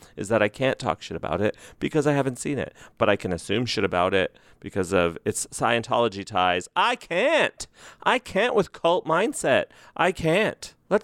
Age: 30-49